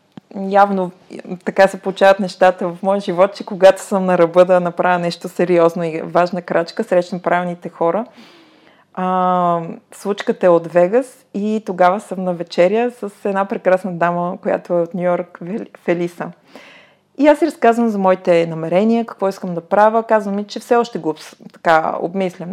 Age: 30-49